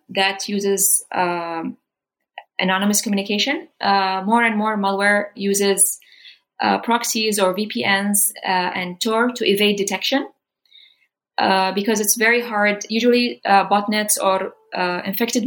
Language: English